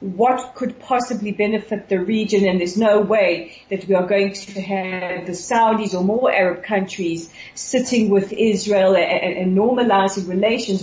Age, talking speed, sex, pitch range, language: 40-59, 165 wpm, female, 185-230 Hz, English